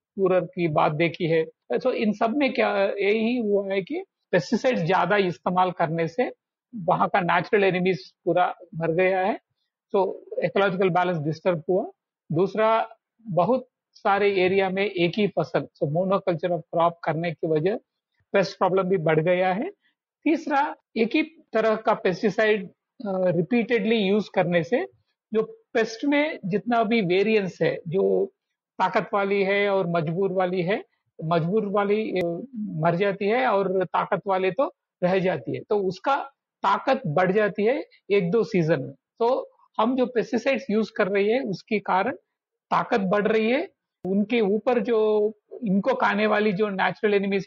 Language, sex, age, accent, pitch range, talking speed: Hindi, male, 50-69, native, 185-230 Hz, 150 wpm